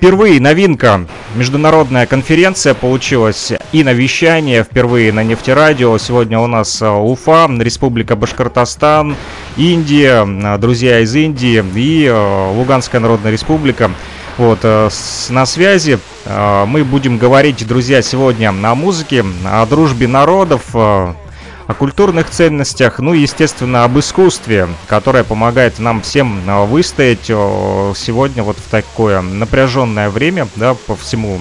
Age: 30-49